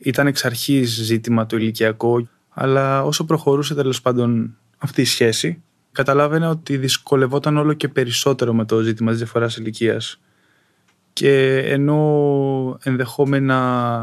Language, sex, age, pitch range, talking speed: Greek, male, 20-39, 110-135 Hz, 125 wpm